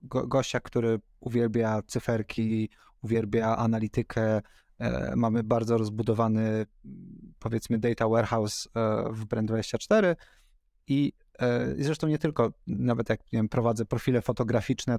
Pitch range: 110-125 Hz